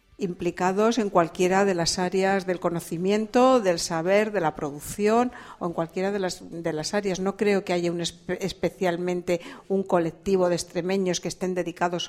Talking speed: 175 wpm